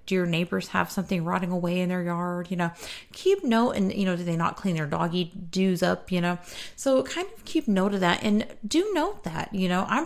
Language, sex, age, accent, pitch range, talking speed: English, female, 30-49, American, 175-235 Hz, 245 wpm